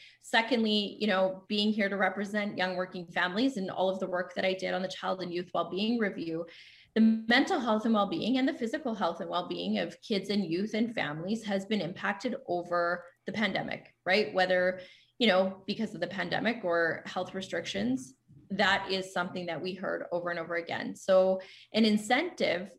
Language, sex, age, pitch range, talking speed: English, female, 20-39, 185-225 Hz, 190 wpm